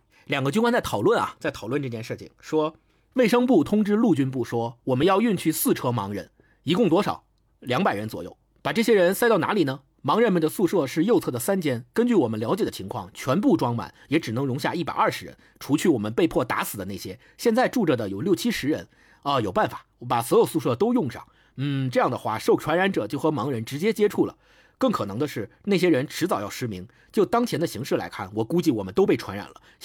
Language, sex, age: Chinese, male, 50-69